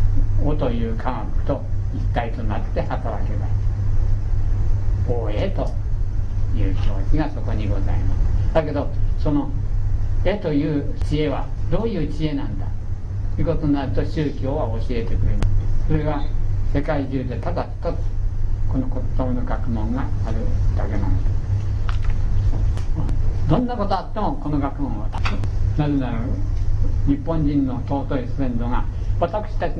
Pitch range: 100-120 Hz